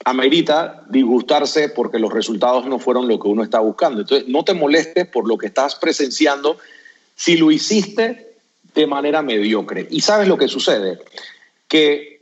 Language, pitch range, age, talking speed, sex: Spanish, 135-200 Hz, 40-59, 160 wpm, male